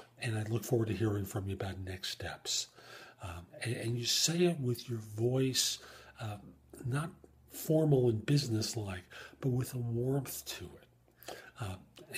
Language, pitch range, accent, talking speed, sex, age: English, 105-135 Hz, American, 160 wpm, male, 50-69